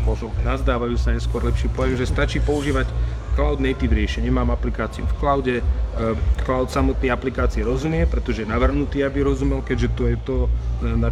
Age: 30-49